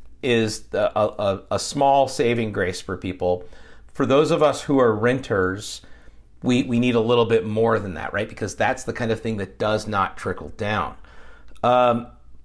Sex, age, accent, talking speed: male, 40-59, American, 185 wpm